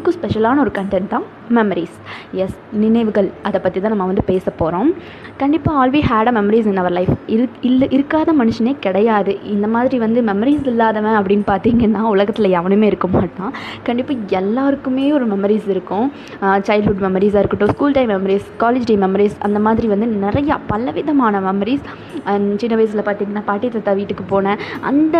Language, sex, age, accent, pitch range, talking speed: Tamil, female, 20-39, native, 200-245 Hz, 150 wpm